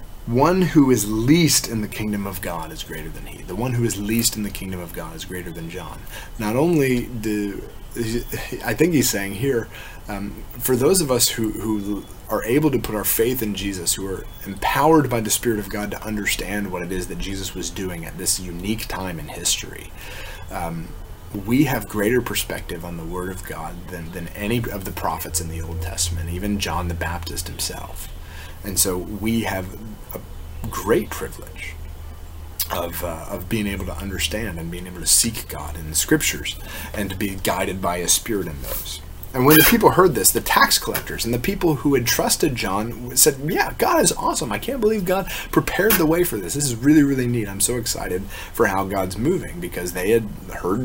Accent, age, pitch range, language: American, 30-49, 85-115 Hz, English